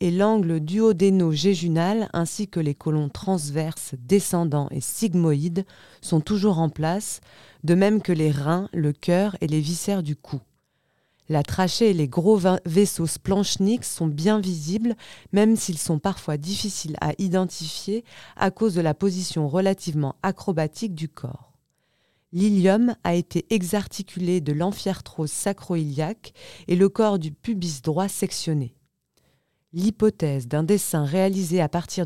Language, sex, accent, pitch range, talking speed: French, female, French, 155-195 Hz, 135 wpm